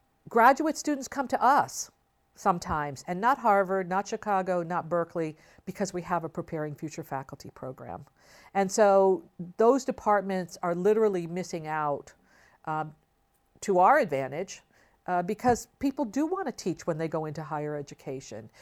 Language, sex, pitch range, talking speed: English, female, 160-210 Hz, 150 wpm